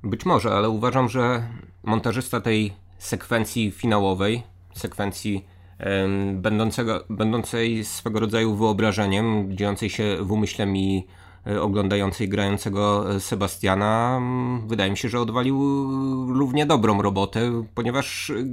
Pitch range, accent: 100-140 Hz, native